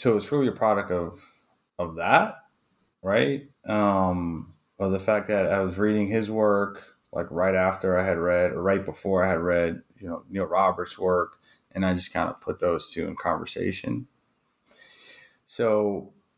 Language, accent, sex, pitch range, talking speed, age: English, American, male, 90-105 Hz, 170 wpm, 30-49